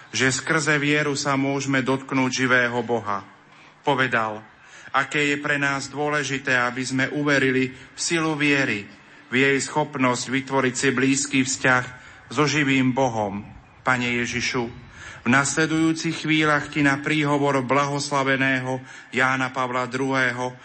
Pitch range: 125-145 Hz